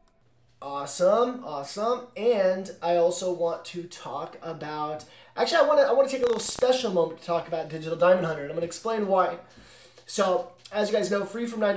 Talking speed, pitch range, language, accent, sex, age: 205 wpm, 165-210 Hz, English, American, male, 20-39